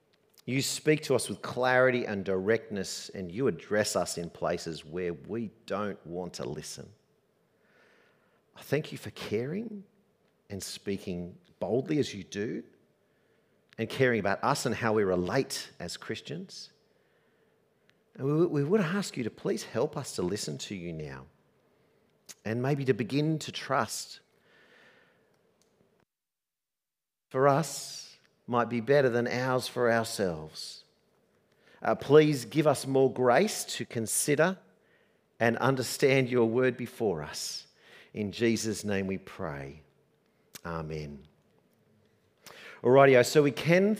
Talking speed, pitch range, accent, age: 130 wpm, 100-145 Hz, Australian, 50-69